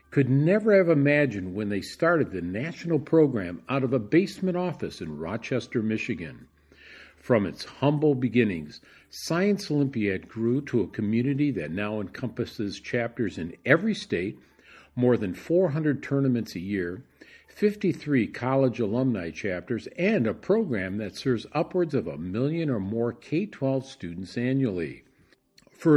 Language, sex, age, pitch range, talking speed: English, male, 50-69, 110-150 Hz, 140 wpm